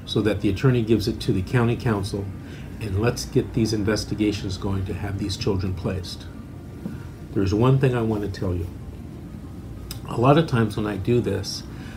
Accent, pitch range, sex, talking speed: American, 100-125 Hz, male, 185 wpm